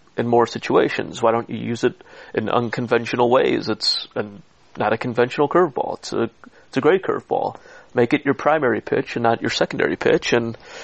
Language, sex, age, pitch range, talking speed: English, male, 30-49, 120-145 Hz, 190 wpm